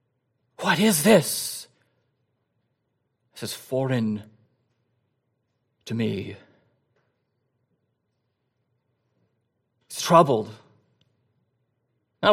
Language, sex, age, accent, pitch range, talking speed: English, male, 40-59, American, 125-170 Hz, 55 wpm